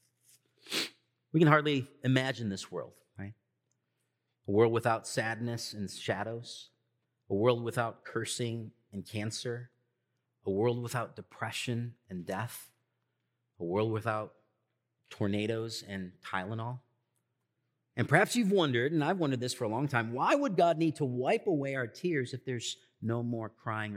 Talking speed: 145 wpm